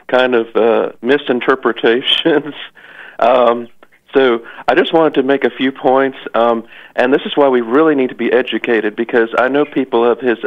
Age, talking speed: 40-59, 180 wpm